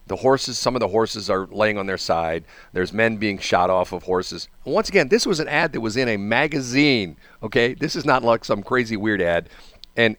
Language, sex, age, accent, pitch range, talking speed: English, male, 50-69, American, 95-125 Hz, 230 wpm